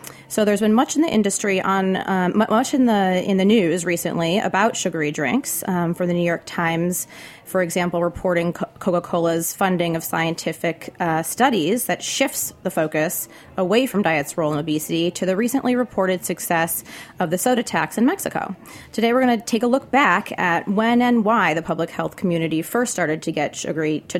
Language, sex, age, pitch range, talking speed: English, female, 30-49, 165-200 Hz, 190 wpm